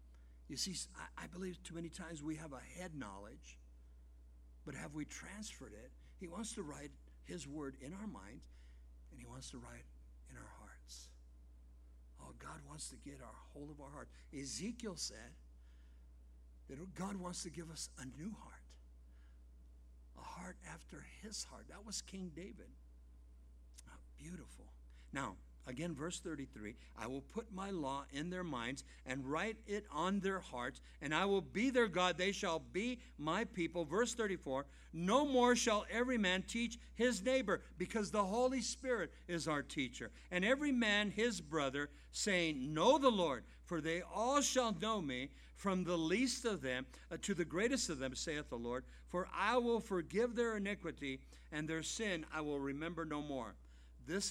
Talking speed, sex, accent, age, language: 175 wpm, male, American, 60-79, English